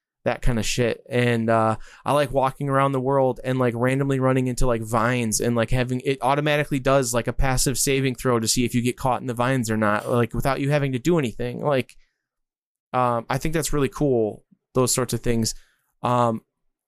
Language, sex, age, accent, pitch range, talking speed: English, male, 20-39, American, 120-135 Hz, 215 wpm